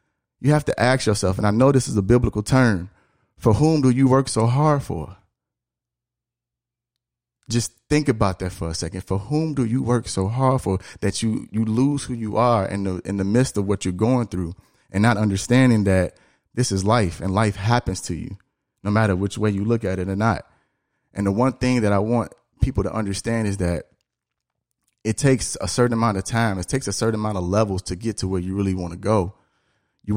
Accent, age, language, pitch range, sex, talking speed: American, 30-49, English, 95-125 Hz, male, 220 wpm